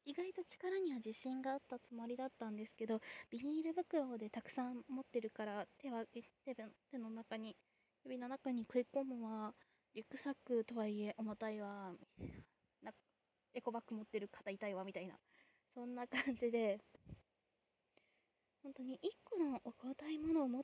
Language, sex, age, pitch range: Japanese, female, 20-39, 215-275 Hz